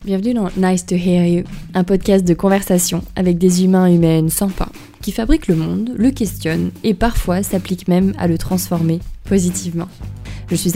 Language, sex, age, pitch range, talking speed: French, female, 20-39, 170-195 Hz, 180 wpm